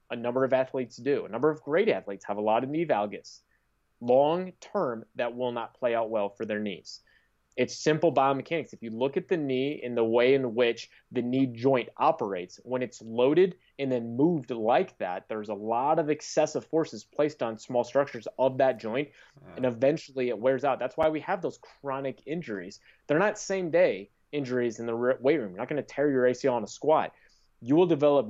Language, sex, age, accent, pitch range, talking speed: English, male, 30-49, American, 115-145 Hz, 210 wpm